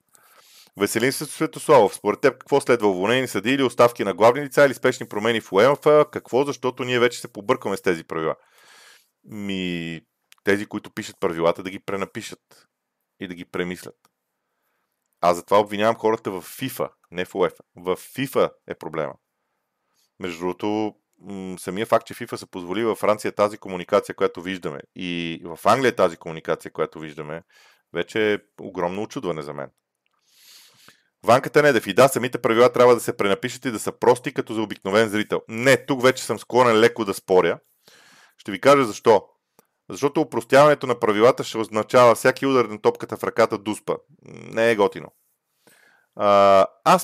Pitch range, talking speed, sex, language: 95-130 Hz, 165 wpm, male, Bulgarian